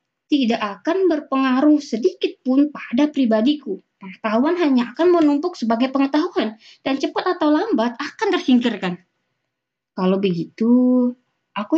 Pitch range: 190-280 Hz